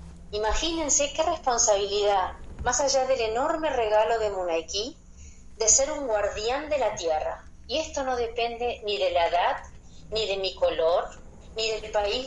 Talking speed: 155 wpm